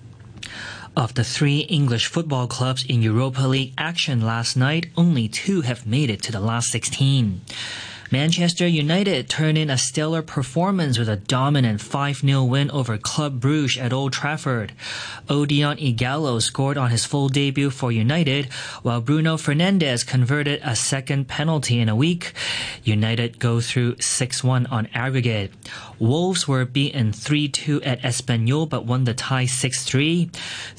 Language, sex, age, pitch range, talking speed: English, male, 30-49, 120-150 Hz, 145 wpm